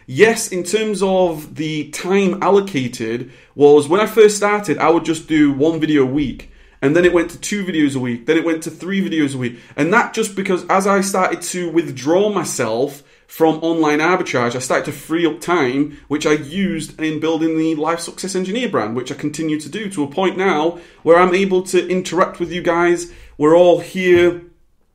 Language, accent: English, British